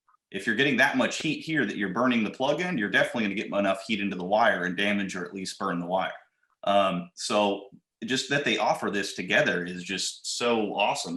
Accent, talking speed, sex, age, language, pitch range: American, 230 wpm, male, 30-49, English, 95-105 Hz